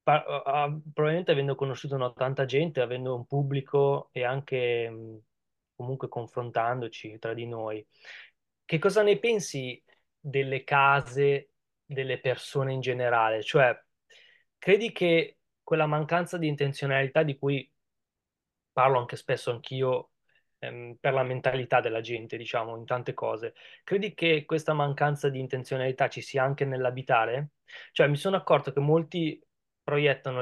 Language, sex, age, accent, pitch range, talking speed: Italian, male, 20-39, native, 125-150 Hz, 125 wpm